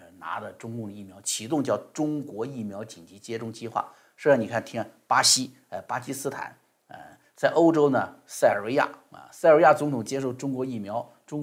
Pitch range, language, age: 115-145 Hz, Chinese, 50-69